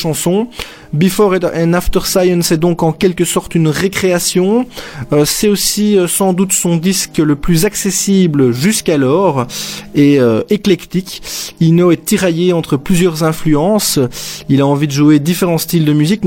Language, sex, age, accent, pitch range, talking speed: French, male, 30-49, French, 145-180 Hz, 150 wpm